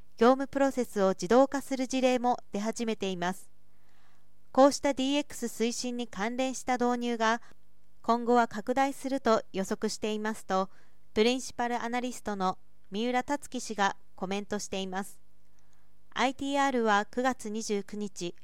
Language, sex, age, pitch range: Japanese, female, 40-59, 205-260 Hz